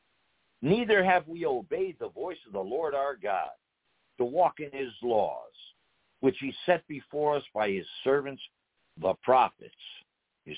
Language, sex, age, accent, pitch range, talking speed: English, male, 60-79, American, 130-180 Hz, 155 wpm